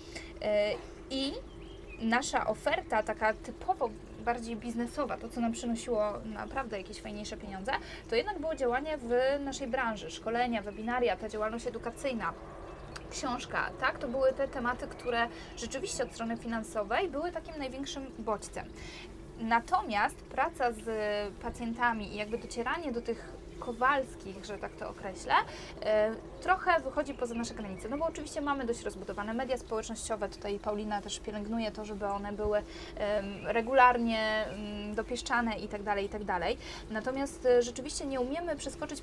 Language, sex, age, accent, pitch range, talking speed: Polish, female, 20-39, native, 215-275 Hz, 130 wpm